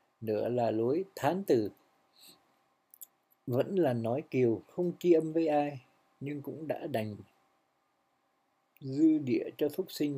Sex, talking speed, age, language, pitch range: male, 135 wpm, 60-79, Vietnamese, 110-160 Hz